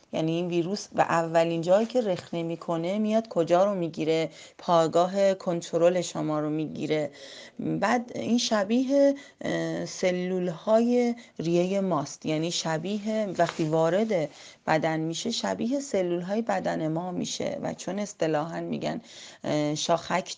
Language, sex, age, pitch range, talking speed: Persian, female, 30-49, 165-210 Hz, 125 wpm